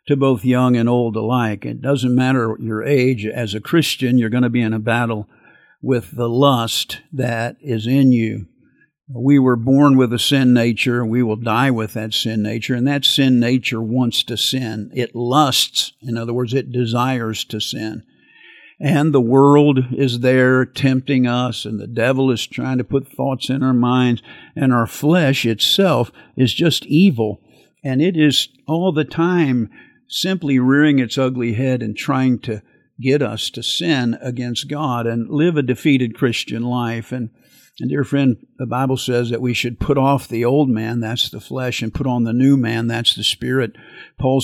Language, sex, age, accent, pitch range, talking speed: English, male, 50-69, American, 120-140 Hz, 185 wpm